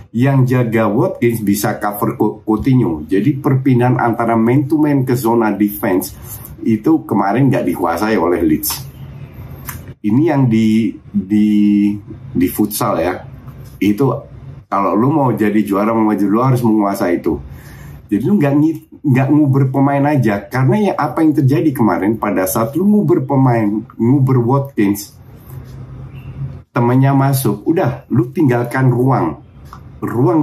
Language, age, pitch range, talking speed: Indonesian, 50-69, 105-130 Hz, 130 wpm